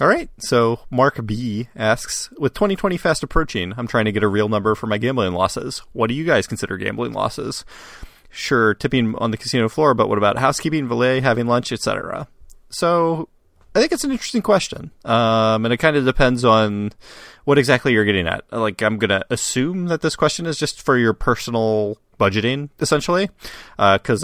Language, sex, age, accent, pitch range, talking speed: English, male, 30-49, American, 105-130 Hz, 190 wpm